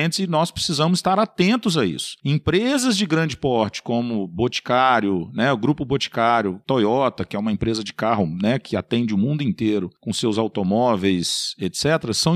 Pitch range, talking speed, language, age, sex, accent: 145-215 Hz, 175 wpm, Portuguese, 40-59, male, Brazilian